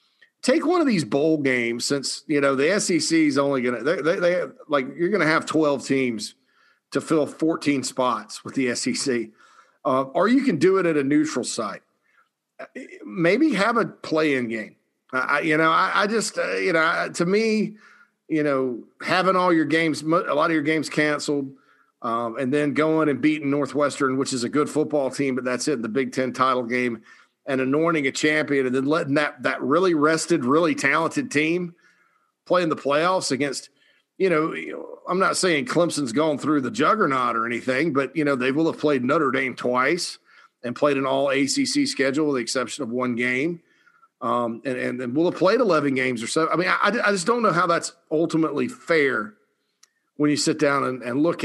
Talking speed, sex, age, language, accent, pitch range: 205 wpm, male, 40-59, English, American, 135-175 Hz